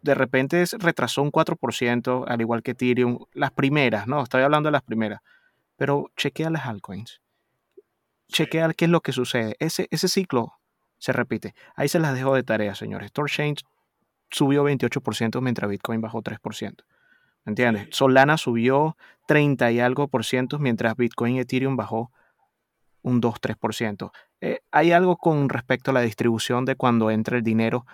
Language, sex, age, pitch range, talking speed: Spanish, male, 30-49, 120-140 Hz, 160 wpm